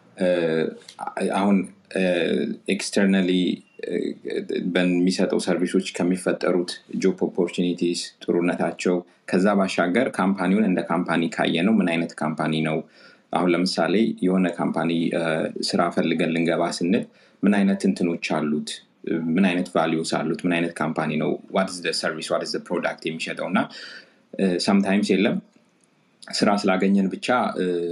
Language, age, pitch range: Amharic, 30-49, 85-95 Hz